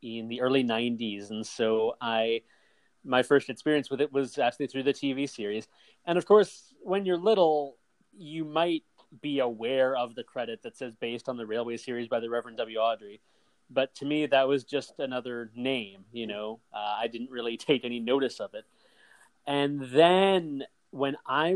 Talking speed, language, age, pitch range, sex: 185 wpm, English, 30-49, 120-155 Hz, male